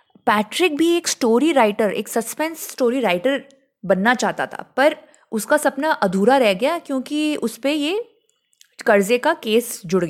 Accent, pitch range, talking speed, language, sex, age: native, 200-290 Hz, 155 wpm, Hindi, female, 20-39